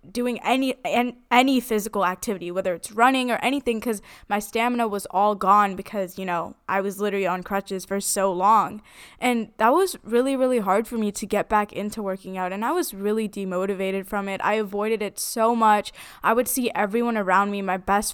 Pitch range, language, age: 195-230 Hz, English, 10-29